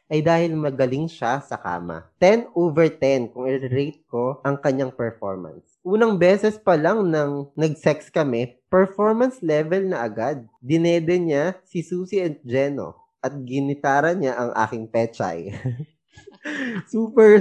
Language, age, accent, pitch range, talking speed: Filipino, 20-39, native, 135-190 Hz, 135 wpm